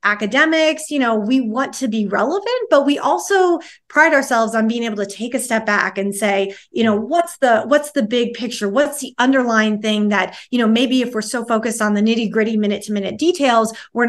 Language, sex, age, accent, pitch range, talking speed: English, female, 30-49, American, 200-245 Hz, 220 wpm